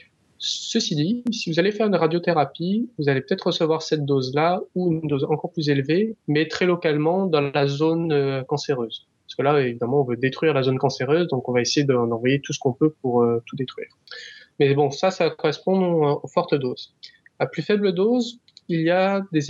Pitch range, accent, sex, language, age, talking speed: 140-170 Hz, French, male, French, 20-39, 205 wpm